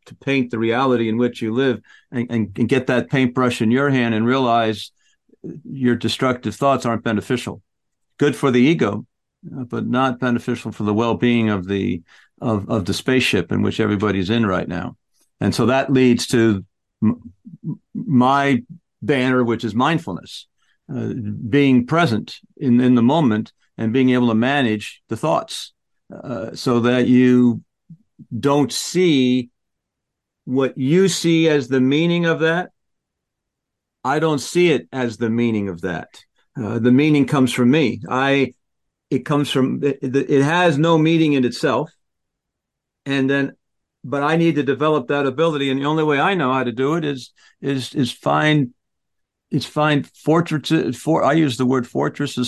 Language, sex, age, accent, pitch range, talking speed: English, male, 50-69, American, 120-145 Hz, 165 wpm